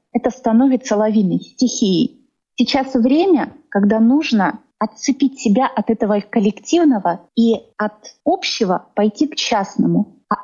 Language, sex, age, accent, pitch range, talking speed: Russian, female, 30-49, native, 205-265 Hz, 115 wpm